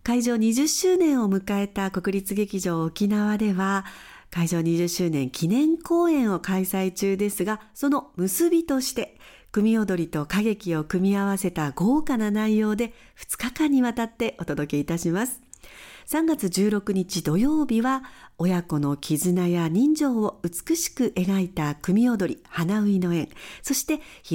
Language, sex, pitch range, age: Japanese, female, 175-255 Hz, 50-69